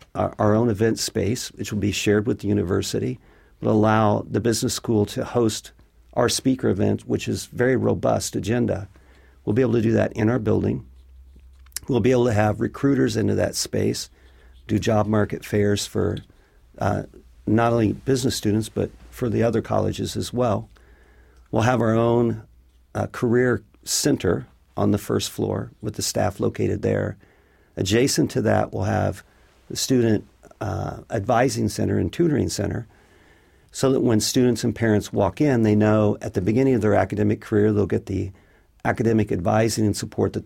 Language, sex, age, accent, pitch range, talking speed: English, male, 50-69, American, 100-115 Hz, 170 wpm